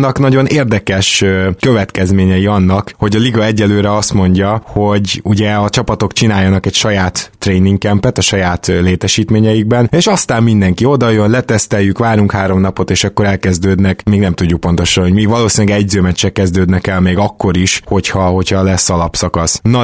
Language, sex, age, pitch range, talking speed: Hungarian, male, 20-39, 95-110 Hz, 155 wpm